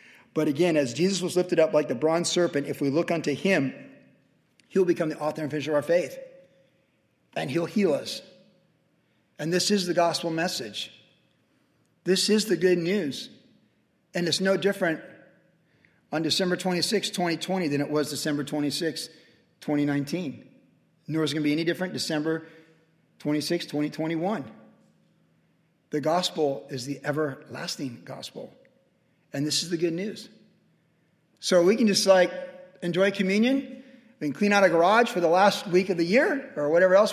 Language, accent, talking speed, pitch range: English, American, 160 wpm, 155-190 Hz